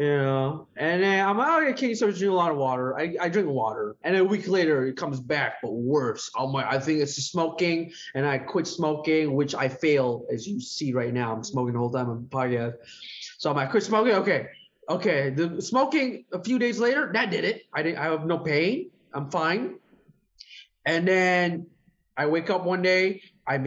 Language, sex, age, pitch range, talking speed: English, male, 20-39, 125-165 Hz, 215 wpm